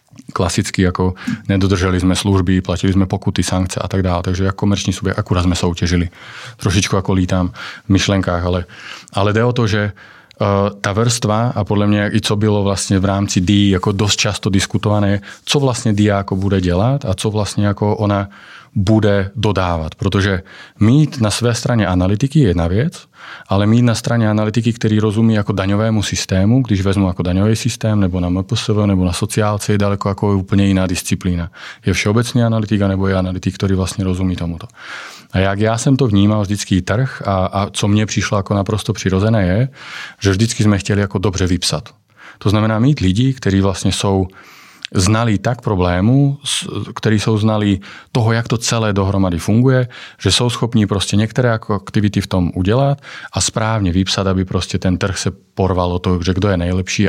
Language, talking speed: Czech, 180 wpm